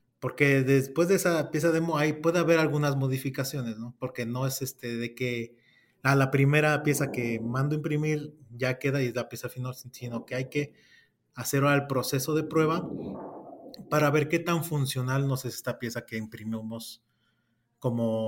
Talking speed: 180 wpm